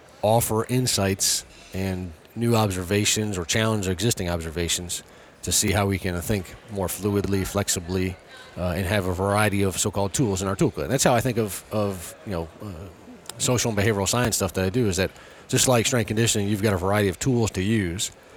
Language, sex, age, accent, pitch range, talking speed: English, male, 40-59, American, 95-115 Hz, 200 wpm